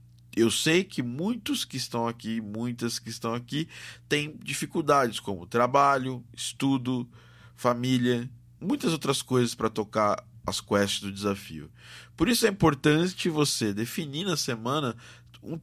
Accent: Brazilian